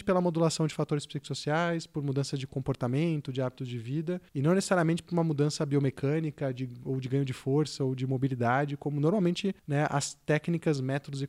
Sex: male